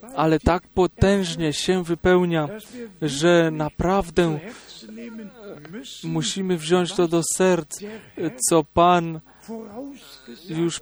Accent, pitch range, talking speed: native, 165-190 Hz, 85 wpm